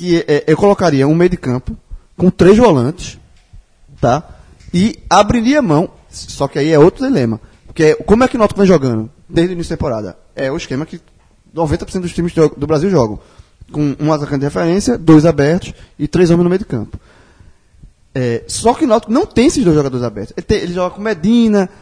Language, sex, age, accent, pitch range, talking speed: Portuguese, male, 20-39, Brazilian, 135-180 Hz, 210 wpm